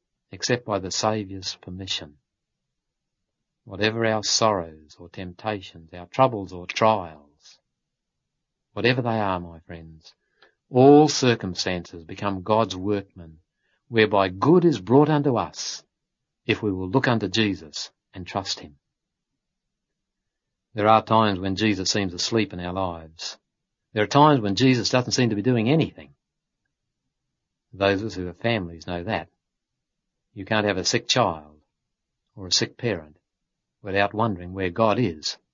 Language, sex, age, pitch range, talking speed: English, male, 60-79, 90-120 Hz, 140 wpm